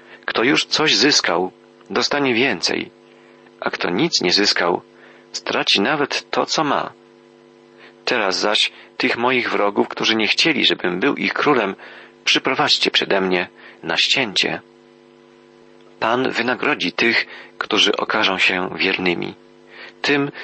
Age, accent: 40-59, native